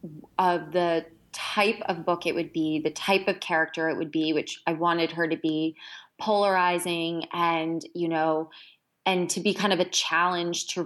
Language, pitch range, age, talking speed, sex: English, 160-180 Hz, 20-39, 180 wpm, female